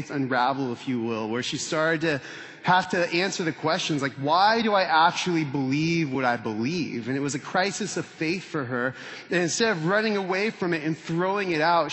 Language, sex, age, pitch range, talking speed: English, male, 20-39, 145-180 Hz, 210 wpm